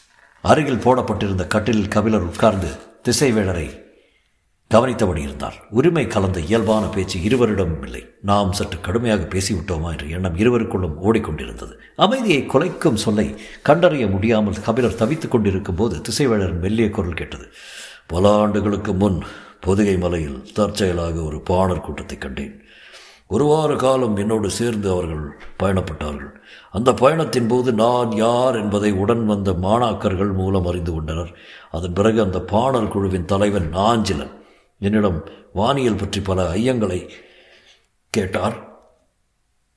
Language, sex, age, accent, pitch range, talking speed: Tamil, male, 60-79, native, 90-110 Hz, 105 wpm